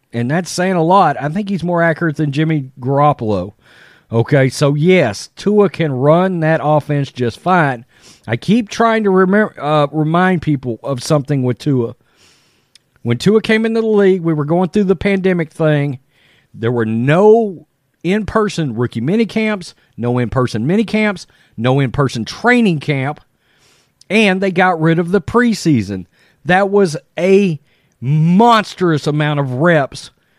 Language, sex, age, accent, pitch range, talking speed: English, male, 40-59, American, 135-190 Hz, 150 wpm